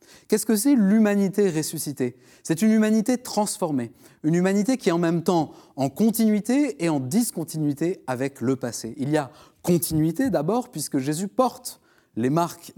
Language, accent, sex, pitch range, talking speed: French, French, male, 145-210 Hz, 160 wpm